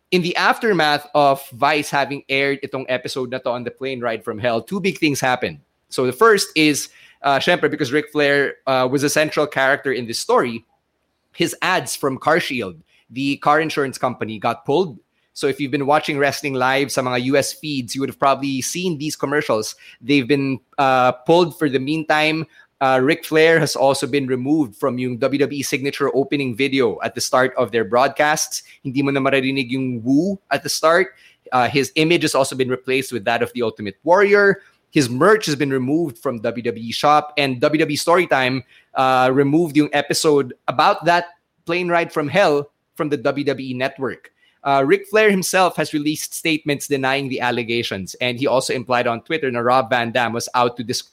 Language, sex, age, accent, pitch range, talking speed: English, male, 30-49, Filipino, 130-155 Hz, 185 wpm